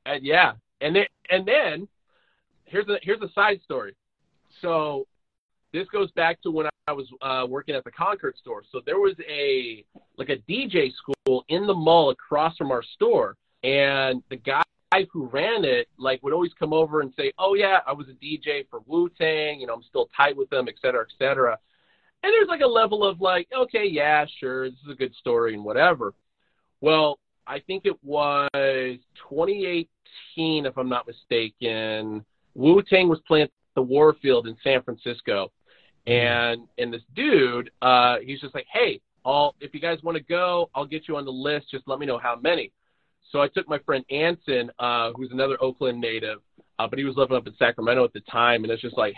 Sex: male